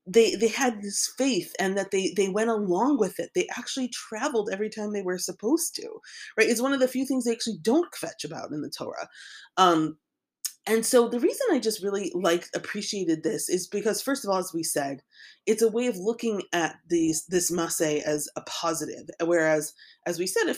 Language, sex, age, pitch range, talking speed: English, female, 30-49, 175-250 Hz, 215 wpm